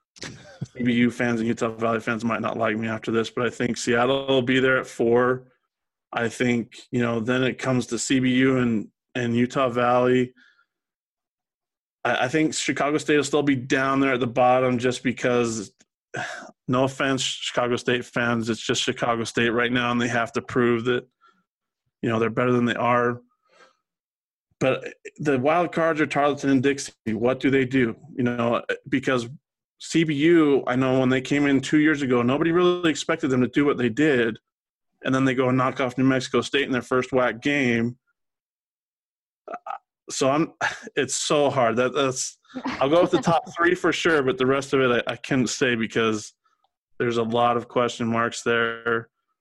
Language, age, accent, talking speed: English, 20-39, American, 190 wpm